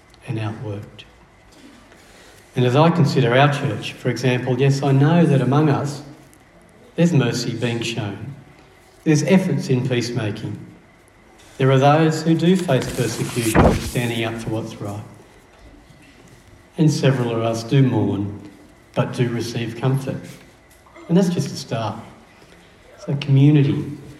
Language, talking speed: English, 135 wpm